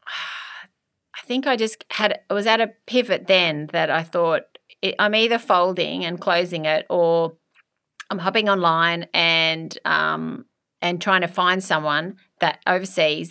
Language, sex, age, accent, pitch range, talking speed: English, female, 30-49, Australian, 155-185 Hz, 150 wpm